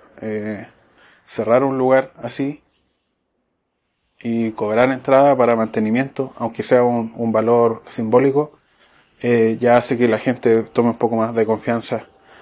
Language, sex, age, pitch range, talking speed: Spanish, male, 20-39, 110-120 Hz, 135 wpm